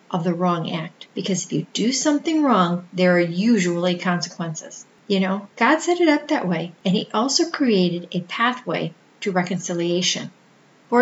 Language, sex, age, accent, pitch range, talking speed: English, female, 40-59, American, 180-235 Hz, 170 wpm